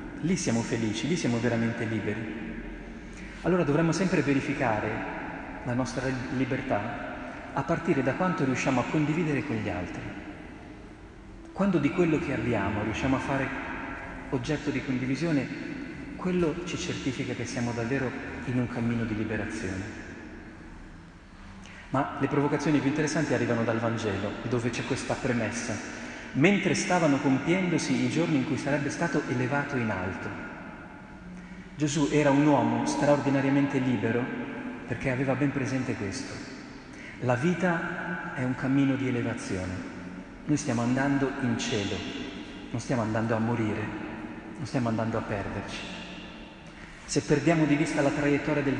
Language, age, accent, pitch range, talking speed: Italian, 40-59, native, 115-145 Hz, 135 wpm